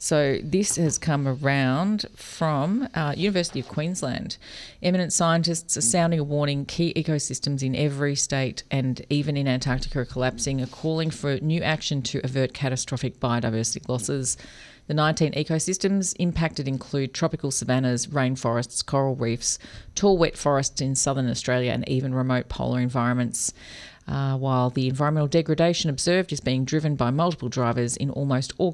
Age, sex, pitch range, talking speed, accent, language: 40-59, female, 125-150 Hz, 150 wpm, Australian, English